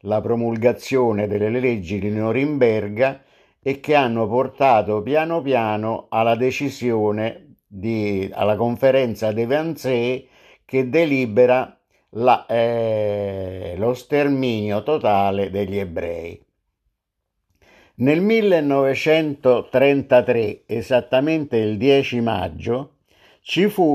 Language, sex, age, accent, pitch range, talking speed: Italian, male, 50-69, native, 110-140 Hz, 90 wpm